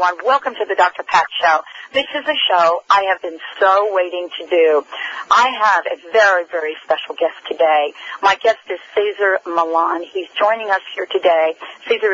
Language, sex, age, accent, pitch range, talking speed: English, female, 50-69, American, 180-245 Hz, 180 wpm